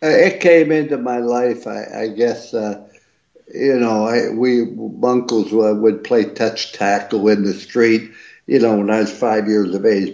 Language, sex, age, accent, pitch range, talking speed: English, male, 60-79, American, 105-120 Hz, 185 wpm